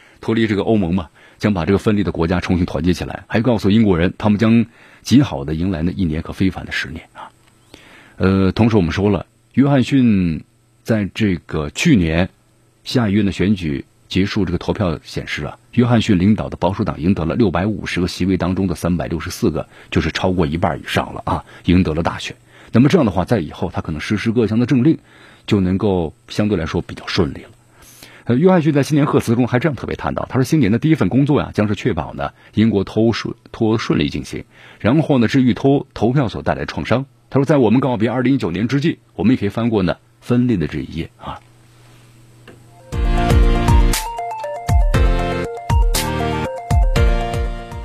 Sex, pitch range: male, 90-120 Hz